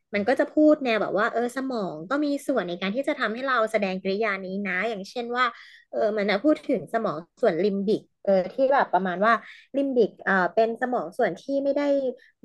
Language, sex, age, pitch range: Thai, female, 20-39, 195-245 Hz